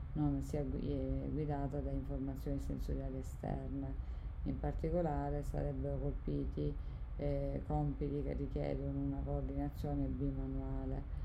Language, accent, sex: Italian, native, female